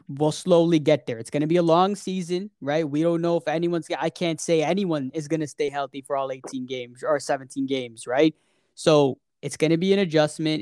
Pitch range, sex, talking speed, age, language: 135-155 Hz, male, 230 wpm, 20-39, English